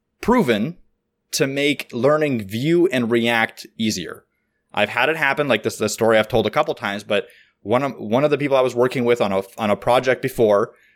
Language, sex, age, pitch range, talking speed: English, male, 20-39, 115-140 Hz, 215 wpm